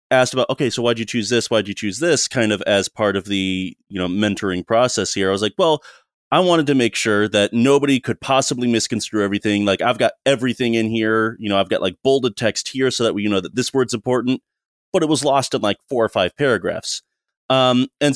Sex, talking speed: male, 240 wpm